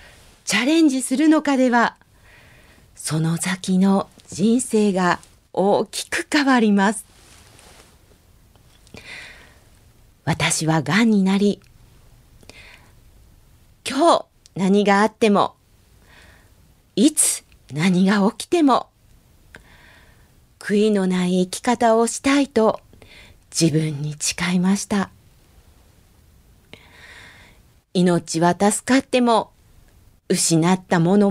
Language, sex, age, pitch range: Japanese, female, 40-59, 150-220 Hz